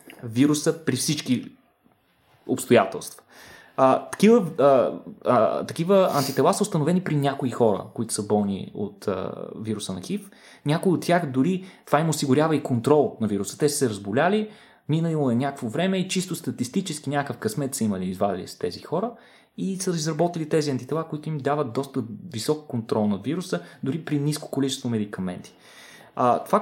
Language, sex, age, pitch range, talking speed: Bulgarian, male, 20-39, 125-175 Hz, 165 wpm